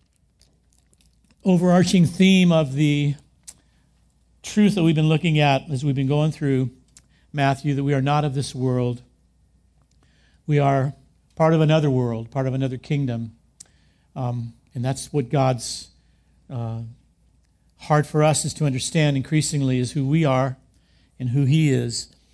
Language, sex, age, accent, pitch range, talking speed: English, male, 50-69, American, 120-160 Hz, 145 wpm